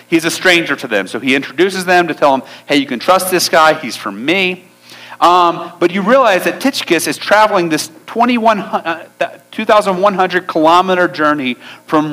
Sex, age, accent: male, 40-59, American